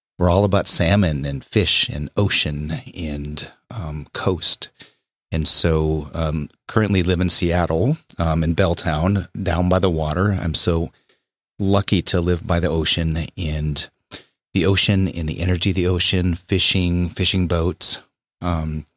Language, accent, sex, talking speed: English, American, male, 145 wpm